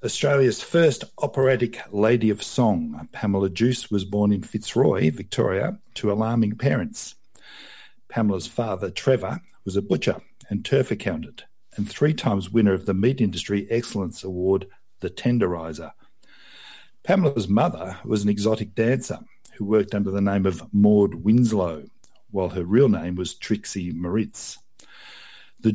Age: 50-69